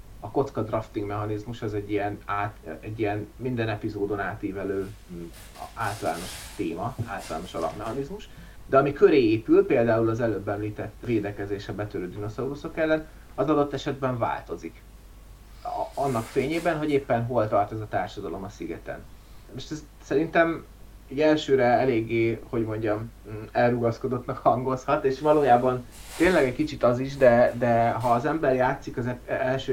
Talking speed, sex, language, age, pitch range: 140 wpm, male, Hungarian, 30-49, 105-130 Hz